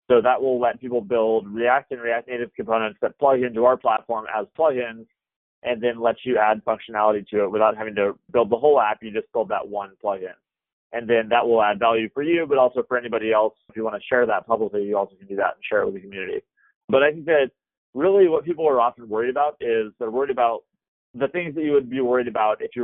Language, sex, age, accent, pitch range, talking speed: English, male, 30-49, American, 110-135 Hz, 250 wpm